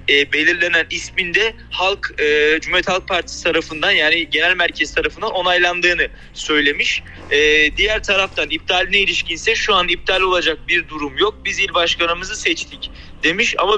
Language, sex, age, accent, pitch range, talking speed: Turkish, male, 30-49, native, 165-200 Hz, 145 wpm